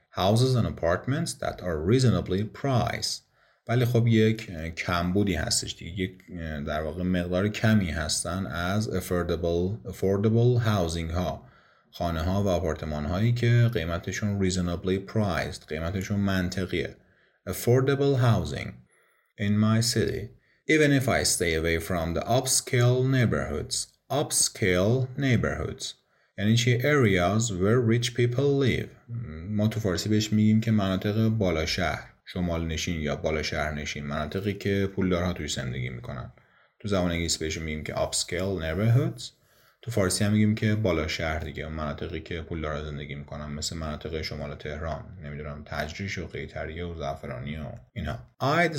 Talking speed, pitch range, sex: 140 wpm, 85-115 Hz, male